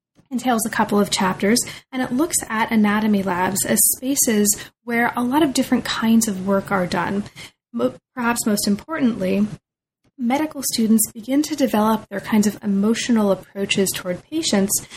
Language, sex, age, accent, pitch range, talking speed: English, female, 20-39, American, 195-240 Hz, 150 wpm